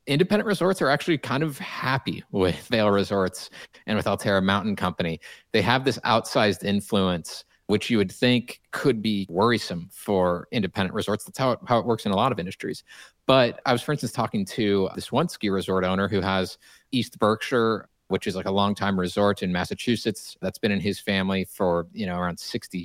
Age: 30-49